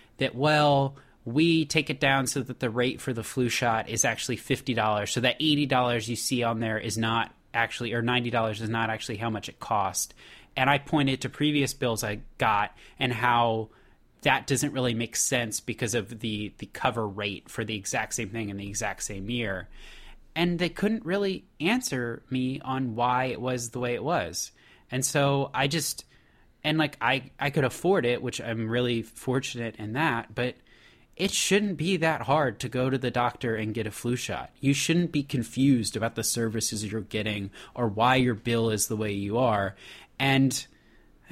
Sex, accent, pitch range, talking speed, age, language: male, American, 115-140 Hz, 195 wpm, 20-39, English